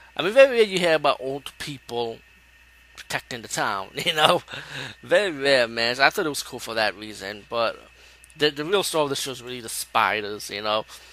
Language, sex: English, male